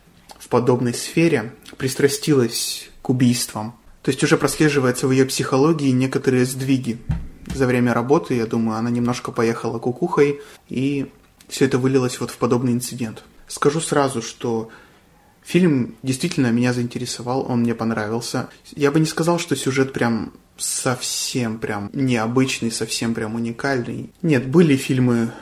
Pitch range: 120-140 Hz